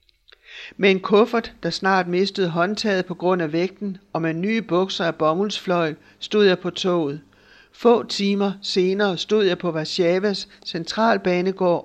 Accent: native